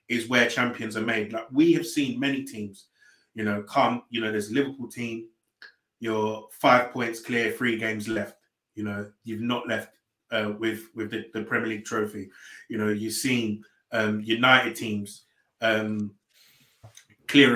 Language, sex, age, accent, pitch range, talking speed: English, male, 20-39, British, 110-120 Hz, 165 wpm